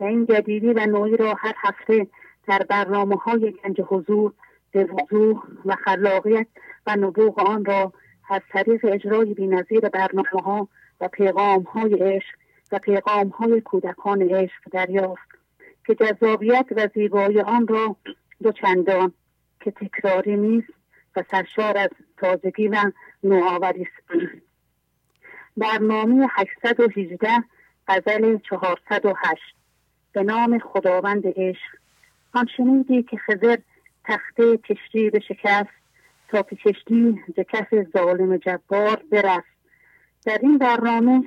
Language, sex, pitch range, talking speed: English, female, 195-225 Hz, 115 wpm